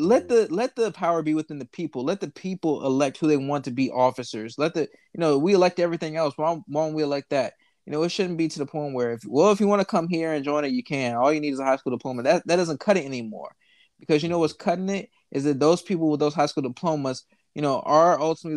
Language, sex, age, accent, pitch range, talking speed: English, male, 20-39, American, 135-185 Hz, 285 wpm